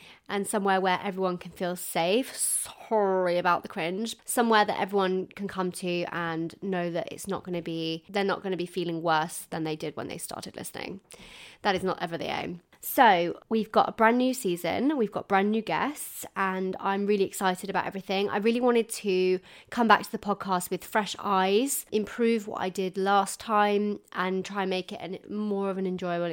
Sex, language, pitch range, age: female, English, 185-235 Hz, 20-39